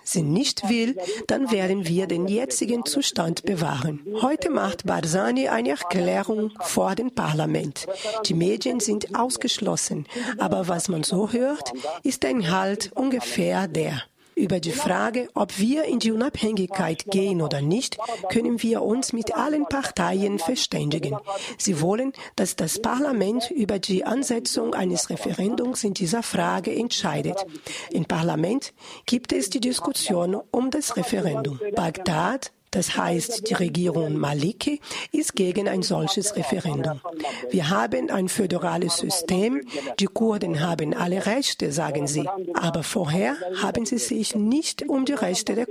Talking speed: 140 wpm